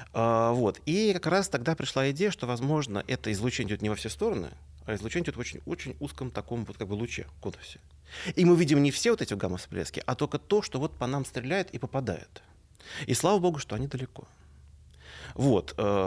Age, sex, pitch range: 30-49, male, 100-140 Hz